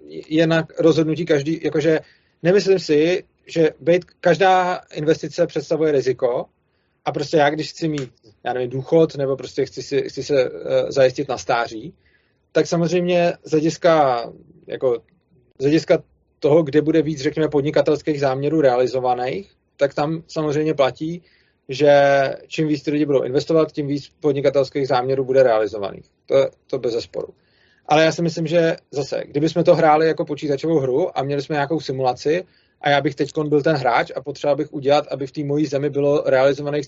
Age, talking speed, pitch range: 30-49, 160 wpm, 140-165 Hz